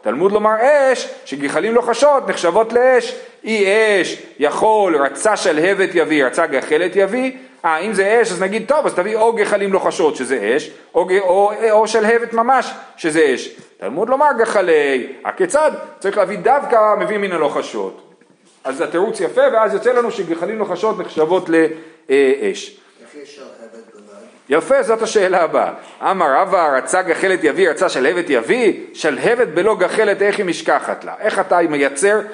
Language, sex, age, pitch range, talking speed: Hebrew, male, 40-59, 185-275 Hz, 155 wpm